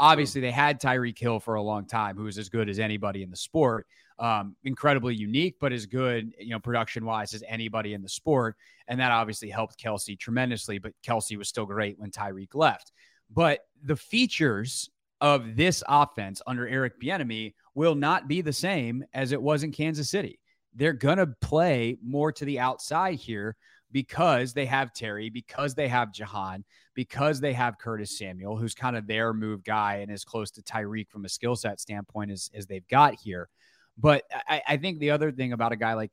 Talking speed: 200 wpm